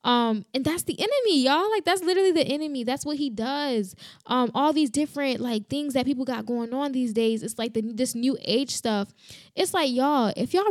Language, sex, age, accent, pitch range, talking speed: English, female, 10-29, American, 215-275 Hz, 225 wpm